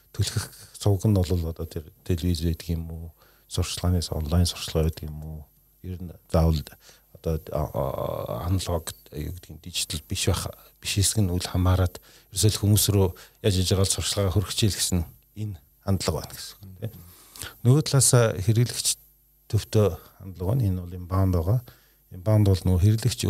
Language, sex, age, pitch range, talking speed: Russian, male, 40-59, 90-105 Hz, 80 wpm